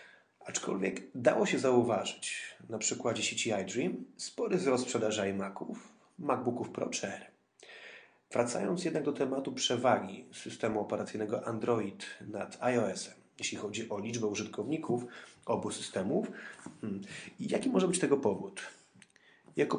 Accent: native